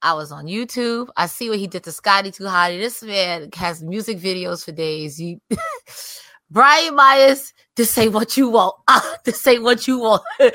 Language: English